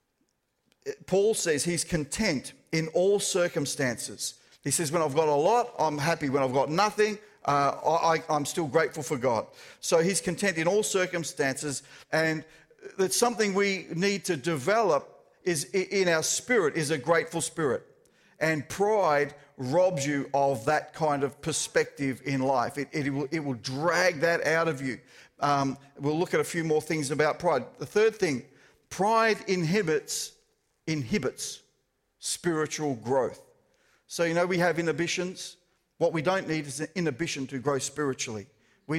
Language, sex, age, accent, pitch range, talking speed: English, male, 50-69, Australian, 150-200 Hz, 160 wpm